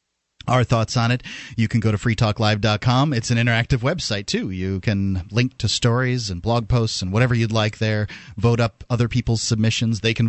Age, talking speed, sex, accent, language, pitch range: 30-49, 200 wpm, male, American, English, 100-130 Hz